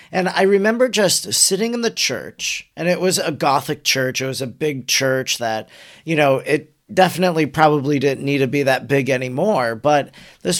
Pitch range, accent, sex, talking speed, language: 130-160 Hz, American, male, 190 wpm, English